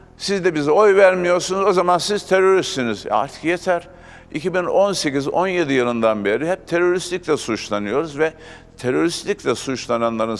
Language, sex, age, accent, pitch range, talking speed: Turkish, male, 60-79, native, 145-185 Hz, 115 wpm